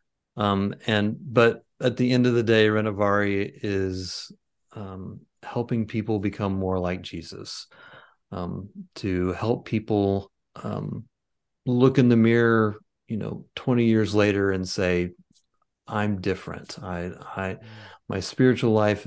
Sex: male